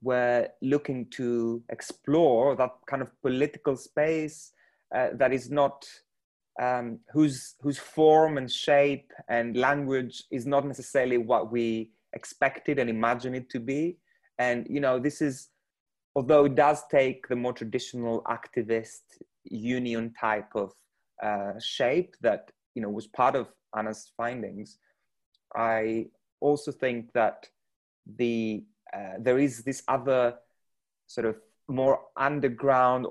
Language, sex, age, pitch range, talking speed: English, male, 30-49, 120-140 Hz, 130 wpm